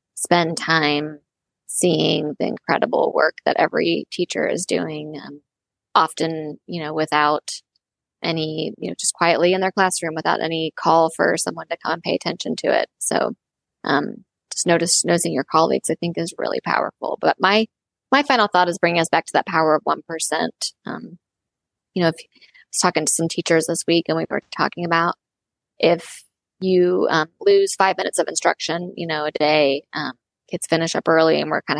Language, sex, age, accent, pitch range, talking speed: English, female, 20-39, American, 155-180 Hz, 185 wpm